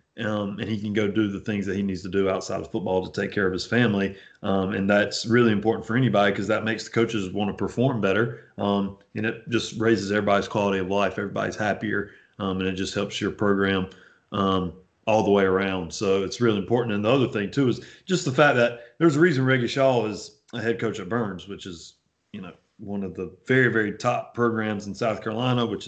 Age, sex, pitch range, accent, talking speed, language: 30-49, male, 100-115 Hz, American, 235 wpm, English